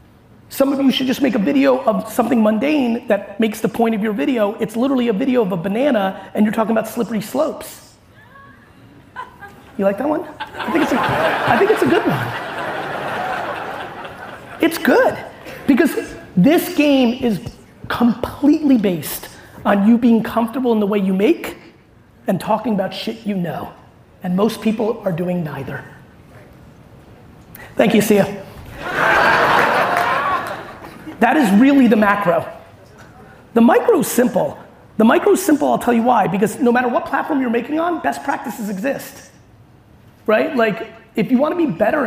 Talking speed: 160 wpm